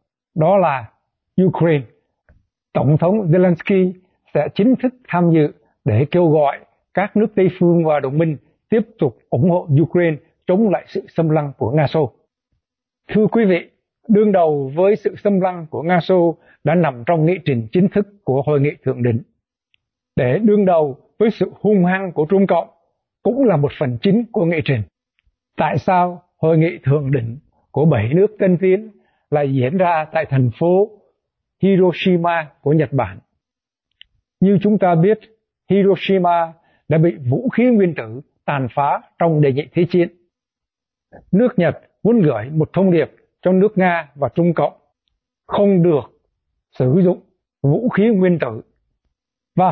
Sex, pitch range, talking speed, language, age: male, 150-195 Hz, 165 wpm, Vietnamese, 60-79